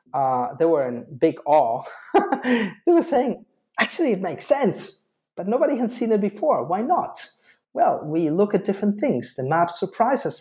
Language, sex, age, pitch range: English, male, 30-49, 140-210 Hz